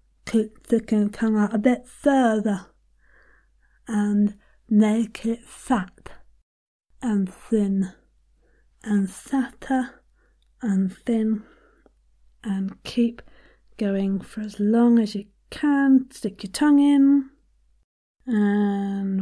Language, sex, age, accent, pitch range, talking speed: English, female, 40-59, British, 200-245 Hz, 95 wpm